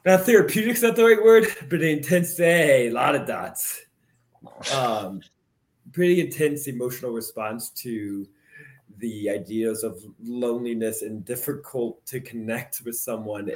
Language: English